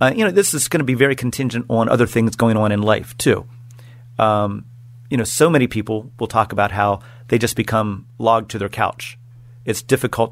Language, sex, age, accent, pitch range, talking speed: English, male, 40-59, American, 110-125 Hz, 215 wpm